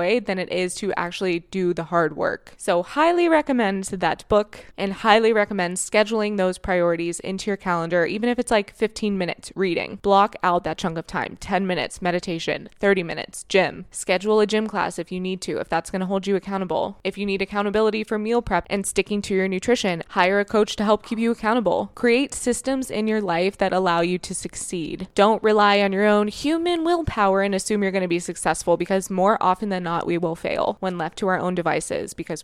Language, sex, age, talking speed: English, female, 20-39, 215 wpm